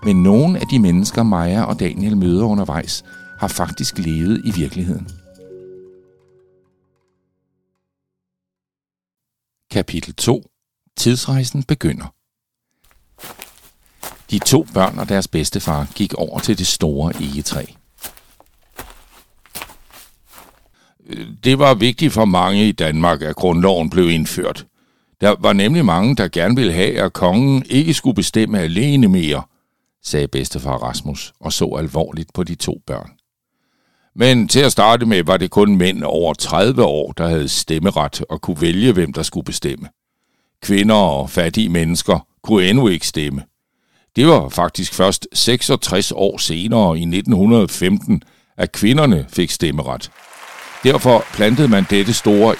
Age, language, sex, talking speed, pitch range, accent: 60-79, Danish, male, 130 wpm, 85-105 Hz, native